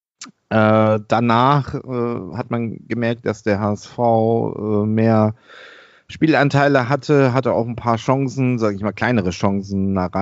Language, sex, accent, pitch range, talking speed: German, male, German, 105-130 Hz, 140 wpm